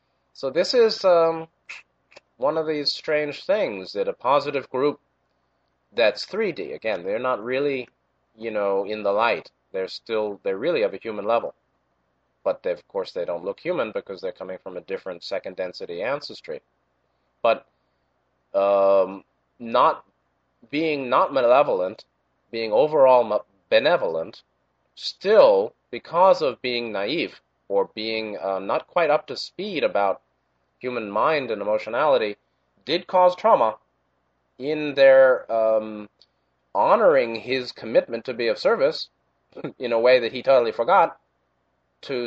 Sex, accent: male, American